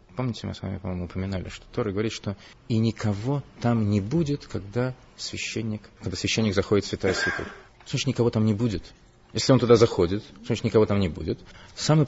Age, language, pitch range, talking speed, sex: 30-49, Russian, 100-130 Hz, 190 wpm, male